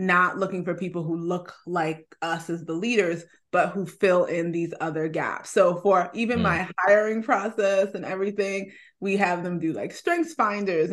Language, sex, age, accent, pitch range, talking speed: English, female, 20-39, American, 175-205 Hz, 180 wpm